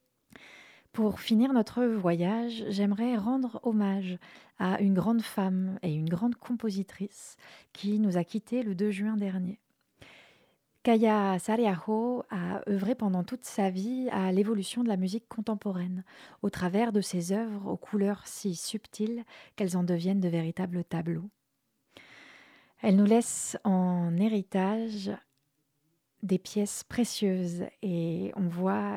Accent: French